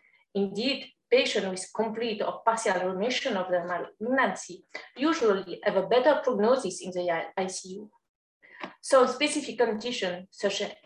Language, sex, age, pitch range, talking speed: English, female, 30-49, 195-255 Hz, 120 wpm